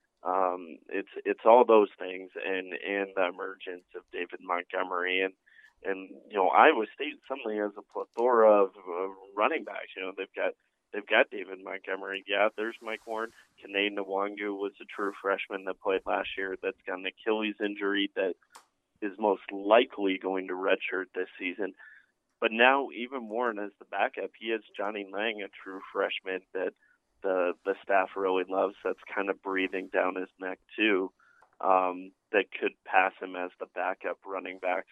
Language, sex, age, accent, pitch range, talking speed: English, male, 20-39, American, 95-105 Hz, 170 wpm